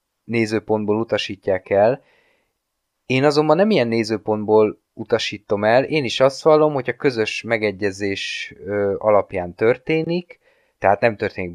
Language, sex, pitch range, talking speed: Hungarian, male, 105-140 Hz, 120 wpm